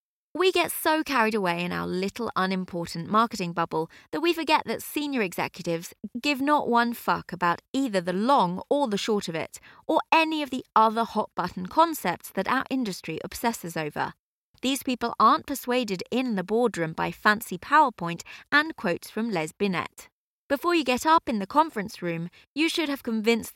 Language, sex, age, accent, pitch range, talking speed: English, female, 20-39, British, 185-265 Hz, 175 wpm